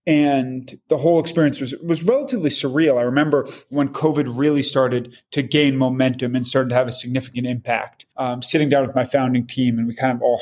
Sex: male